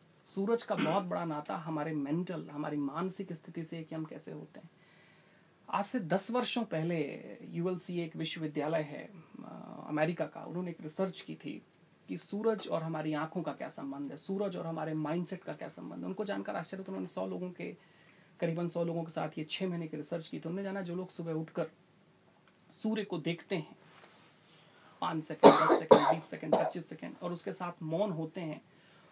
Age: 30-49